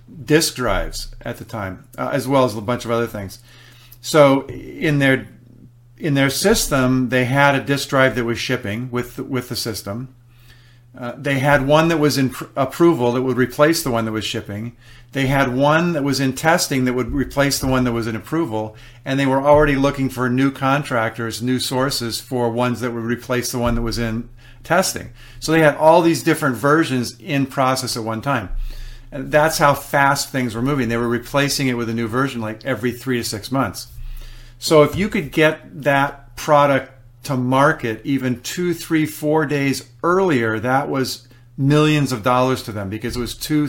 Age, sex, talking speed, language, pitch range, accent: 50-69, male, 200 wpm, English, 120-140 Hz, American